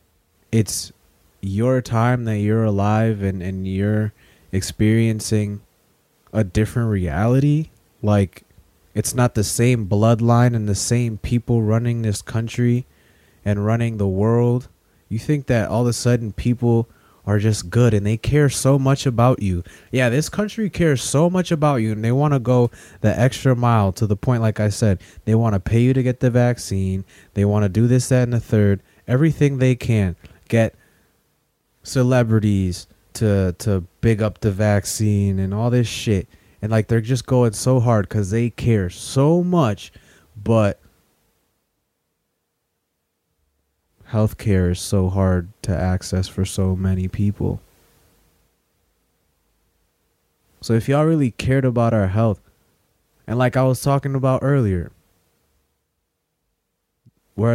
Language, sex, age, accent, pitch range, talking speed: English, male, 20-39, American, 95-120 Hz, 150 wpm